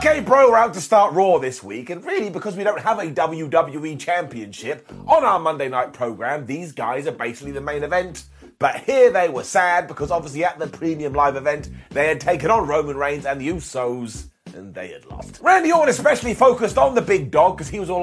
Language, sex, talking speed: English, male, 225 wpm